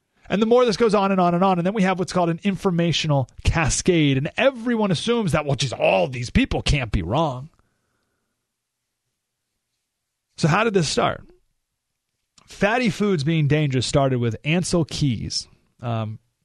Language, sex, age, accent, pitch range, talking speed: English, male, 30-49, American, 120-185 Hz, 165 wpm